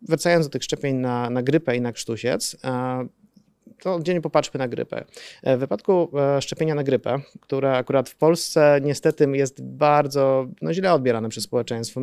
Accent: native